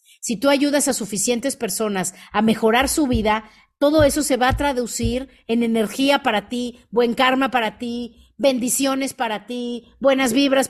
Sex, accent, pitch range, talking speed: female, Mexican, 210-255 Hz, 165 wpm